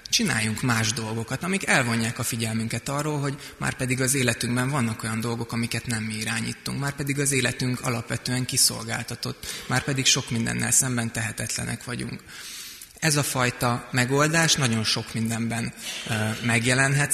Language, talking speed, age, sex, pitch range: Hungarian, 135 wpm, 20-39, male, 115-135 Hz